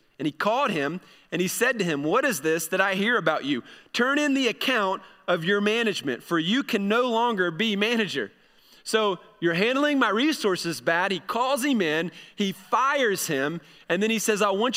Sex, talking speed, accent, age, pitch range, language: male, 205 wpm, American, 30-49, 175-230 Hz, English